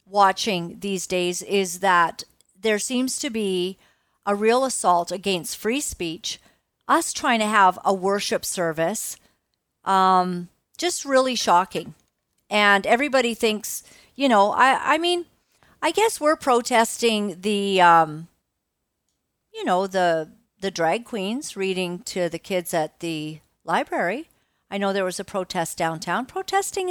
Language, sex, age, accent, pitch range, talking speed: English, female, 50-69, American, 180-230 Hz, 135 wpm